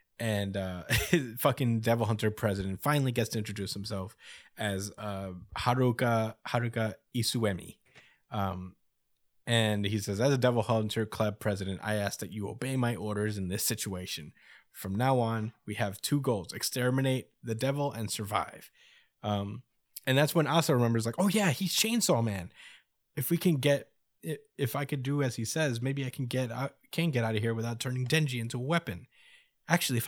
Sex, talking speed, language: male, 180 wpm, English